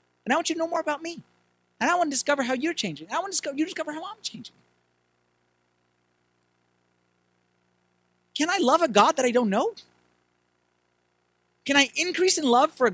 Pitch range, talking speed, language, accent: 180-270 Hz, 195 wpm, English, American